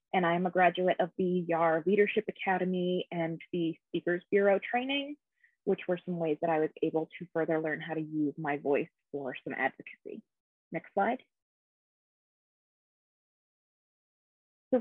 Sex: female